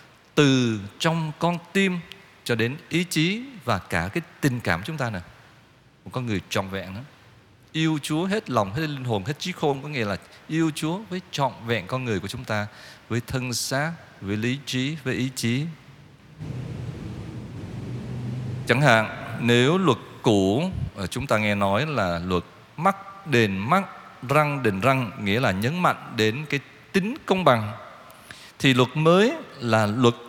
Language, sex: Vietnamese, male